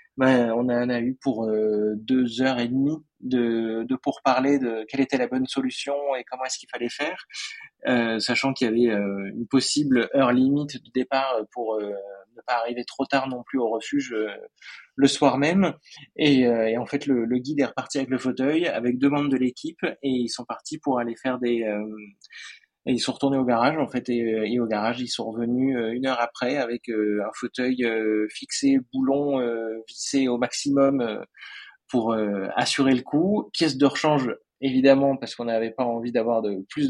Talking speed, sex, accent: 205 wpm, male, French